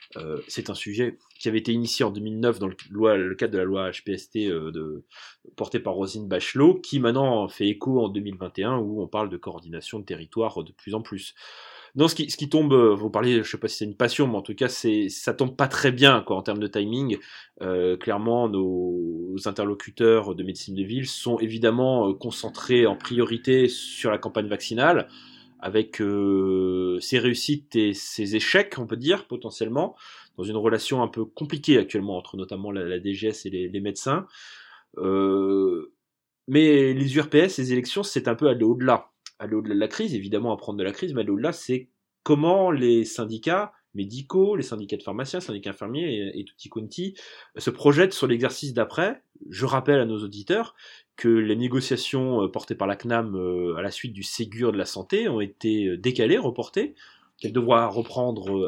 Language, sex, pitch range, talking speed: French, male, 100-130 Hz, 185 wpm